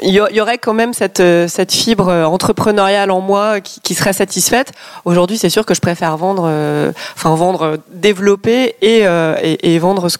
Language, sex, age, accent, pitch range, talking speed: French, female, 20-39, French, 175-205 Hz, 190 wpm